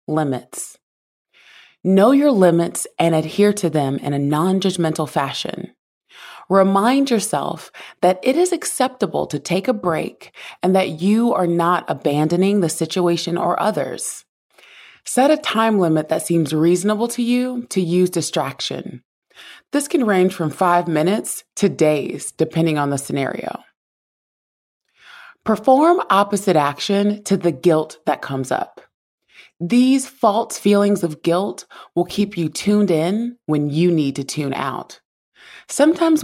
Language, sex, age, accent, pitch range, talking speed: English, female, 30-49, American, 160-210 Hz, 135 wpm